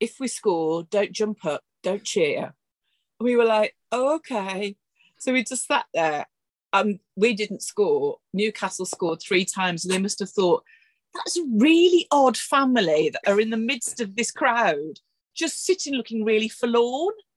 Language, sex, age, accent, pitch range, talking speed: English, female, 40-59, British, 185-240 Hz, 170 wpm